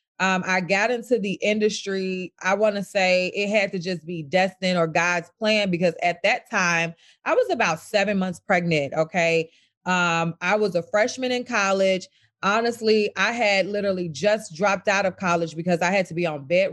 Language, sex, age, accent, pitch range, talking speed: English, female, 30-49, American, 175-215 Hz, 190 wpm